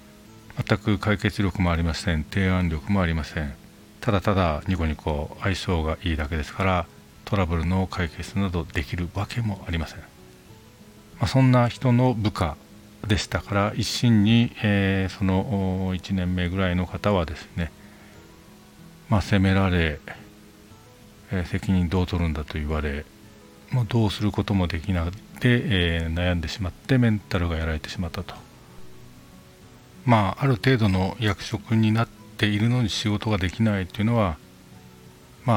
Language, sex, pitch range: Japanese, male, 85-105 Hz